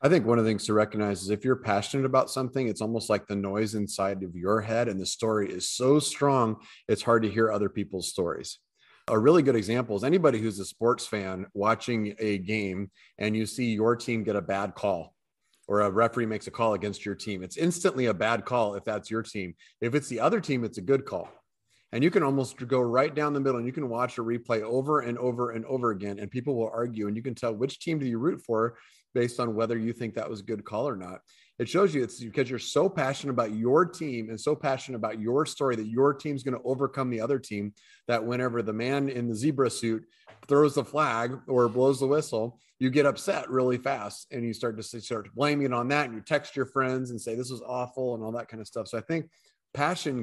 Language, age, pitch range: English, 30-49, 110-135 Hz